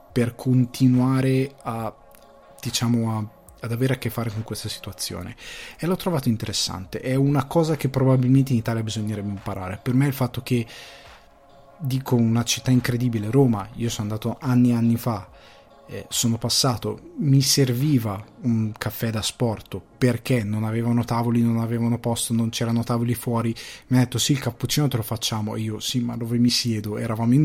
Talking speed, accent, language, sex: 175 wpm, native, Italian, male